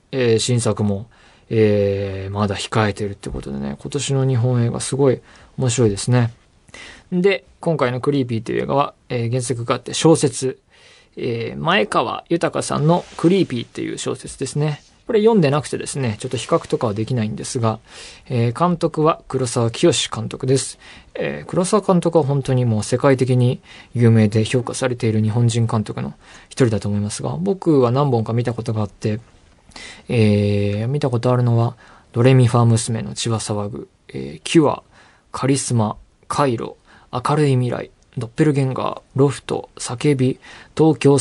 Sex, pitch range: male, 110-140 Hz